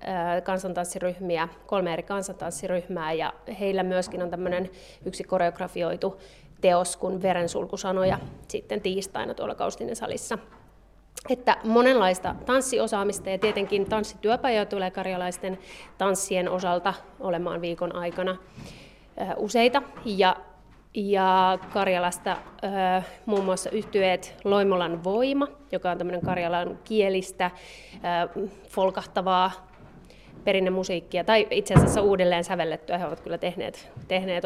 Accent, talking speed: native, 100 wpm